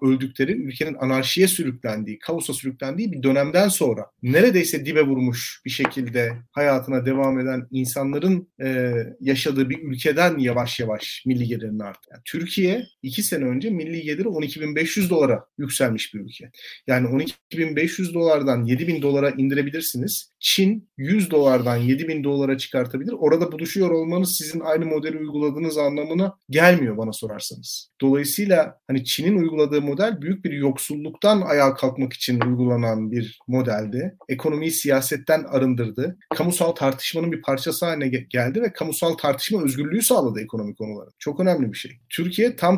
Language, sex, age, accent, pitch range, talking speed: Turkish, male, 40-59, native, 130-170 Hz, 135 wpm